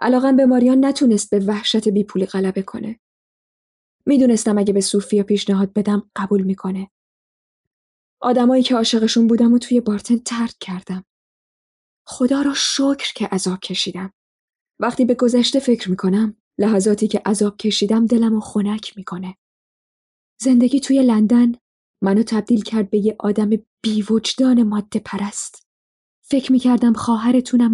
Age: 10-29